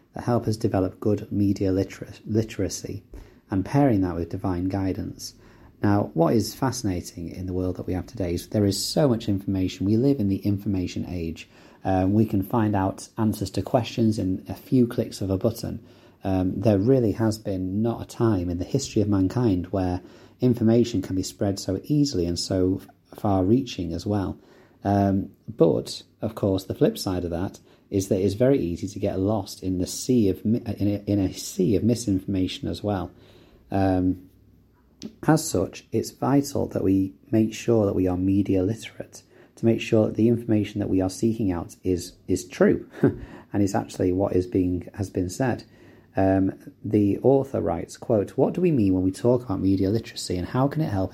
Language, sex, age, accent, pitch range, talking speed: English, male, 30-49, British, 95-115 Hz, 190 wpm